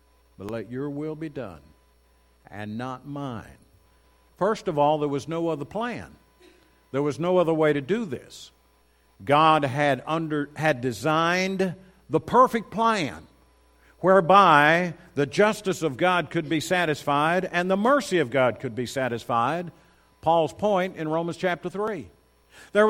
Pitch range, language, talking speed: 140-195 Hz, English, 145 wpm